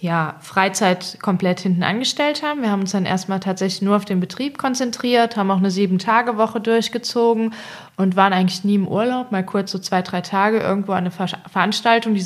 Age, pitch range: 20-39, 180-220 Hz